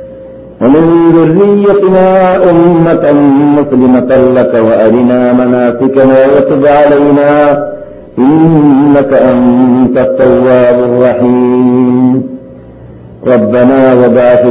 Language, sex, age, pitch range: Malayalam, male, 50-69, 130-165 Hz